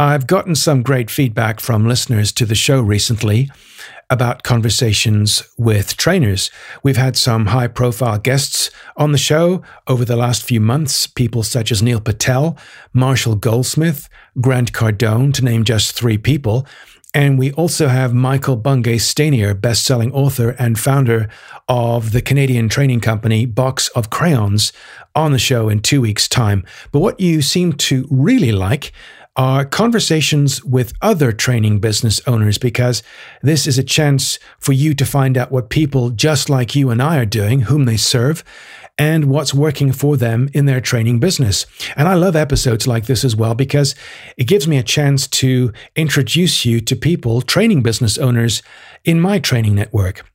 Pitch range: 115-145 Hz